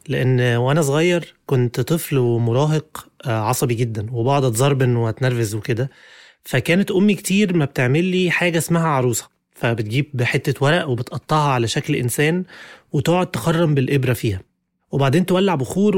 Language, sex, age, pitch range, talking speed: Arabic, male, 20-39, 125-165 Hz, 130 wpm